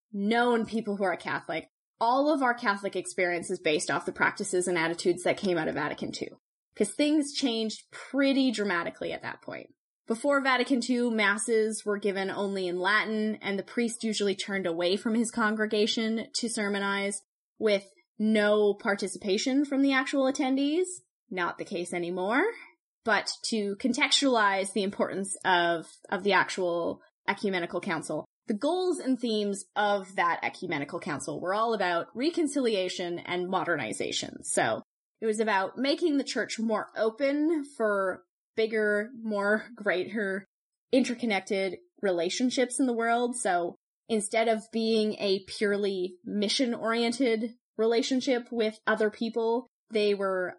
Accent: American